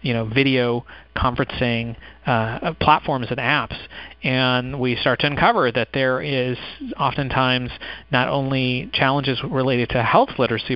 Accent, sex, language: American, male, English